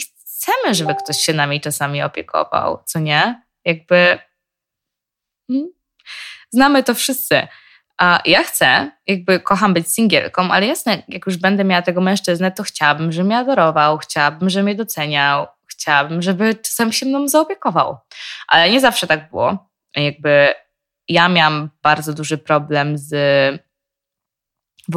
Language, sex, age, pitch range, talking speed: Polish, female, 20-39, 155-210 Hz, 135 wpm